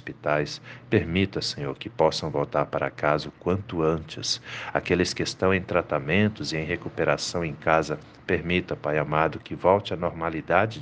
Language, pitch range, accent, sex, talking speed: Portuguese, 75-95 Hz, Brazilian, male, 150 wpm